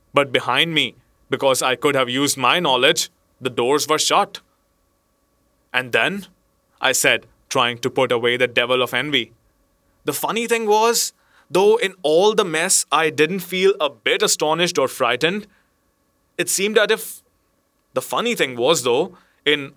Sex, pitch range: male, 130-165 Hz